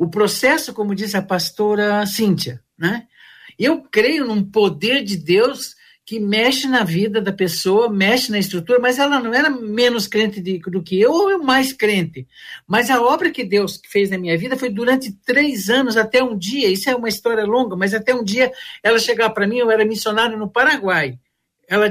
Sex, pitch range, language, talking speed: male, 185-240 Hz, Portuguese, 195 wpm